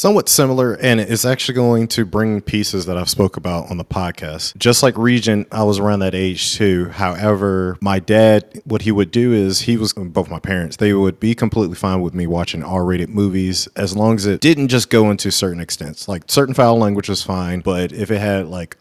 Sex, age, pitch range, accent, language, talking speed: male, 30-49, 90-110 Hz, American, English, 220 wpm